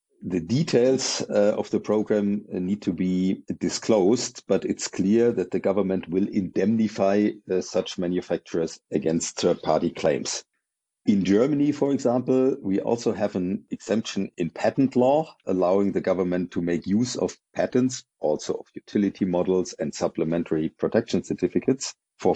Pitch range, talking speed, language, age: 90-115 Hz, 140 wpm, English, 50-69